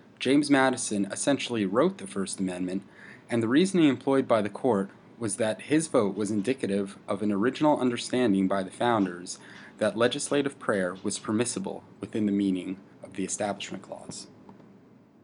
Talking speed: 155 wpm